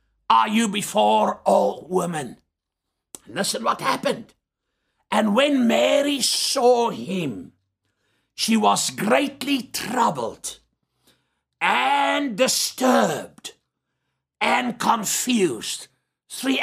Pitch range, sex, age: 185-260 Hz, male, 60-79